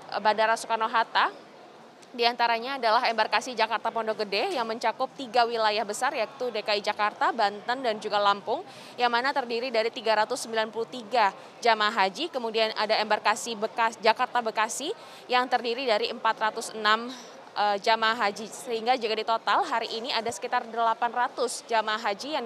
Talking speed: 135 wpm